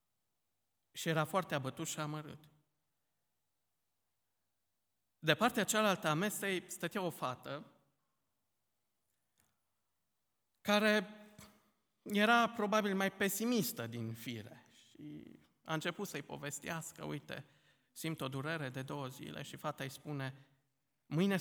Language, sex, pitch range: Romanian, male, 120-160 Hz